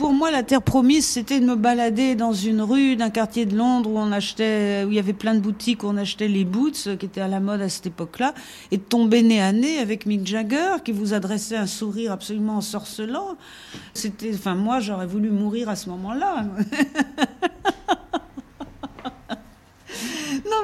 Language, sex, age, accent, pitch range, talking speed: French, female, 50-69, French, 205-275 Hz, 185 wpm